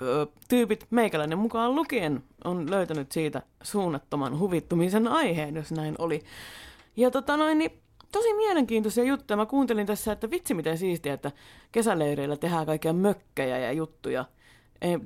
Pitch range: 150-245 Hz